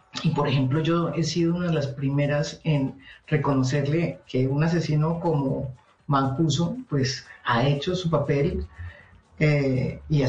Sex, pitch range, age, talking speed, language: female, 135-165 Hz, 50-69, 145 wpm, Spanish